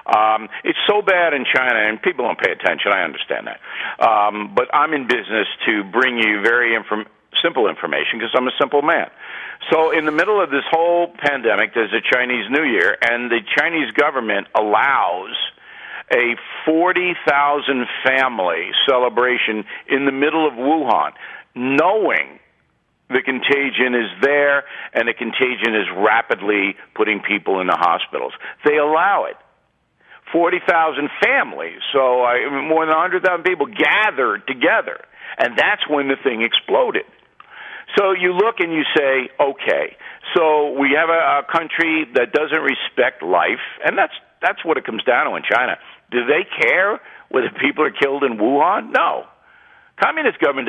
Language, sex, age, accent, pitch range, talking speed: English, male, 50-69, American, 125-170 Hz, 150 wpm